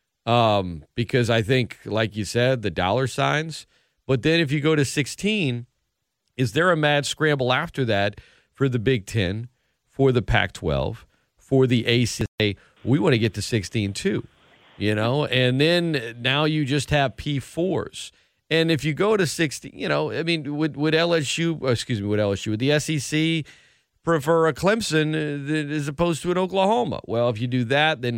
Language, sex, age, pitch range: English, male, 40-59, 115-155 Hz